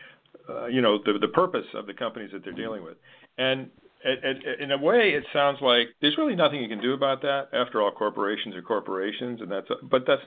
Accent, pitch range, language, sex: American, 100-125 Hz, English, male